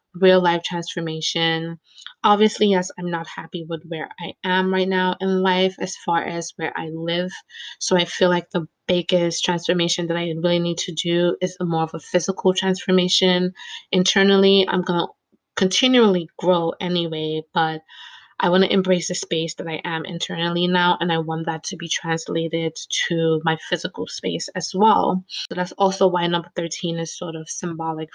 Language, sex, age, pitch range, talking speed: English, female, 20-39, 165-190 Hz, 175 wpm